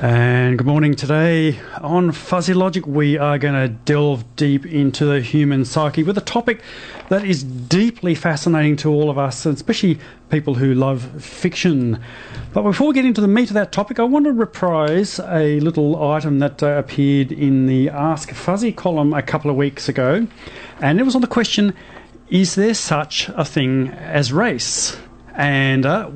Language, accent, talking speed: English, New Zealand, 180 wpm